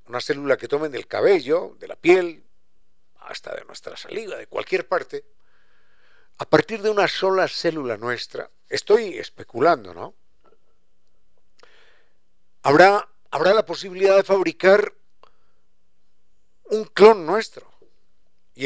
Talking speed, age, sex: 115 wpm, 50-69, male